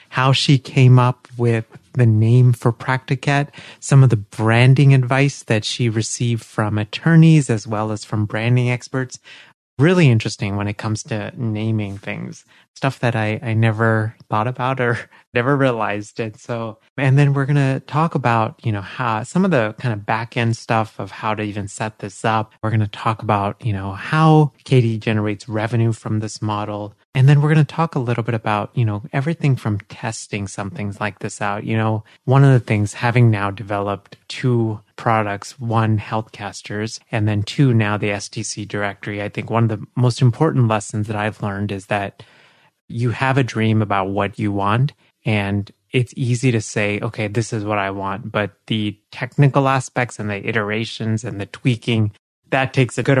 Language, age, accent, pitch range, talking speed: English, 30-49, American, 105-130 Hz, 190 wpm